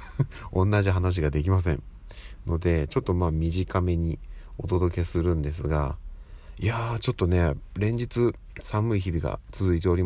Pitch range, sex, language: 80-95 Hz, male, Japanese